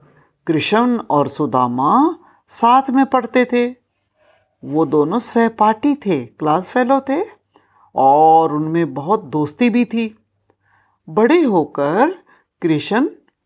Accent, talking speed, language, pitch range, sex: native, 105 wpm, Hindi, 170-270 Hz, female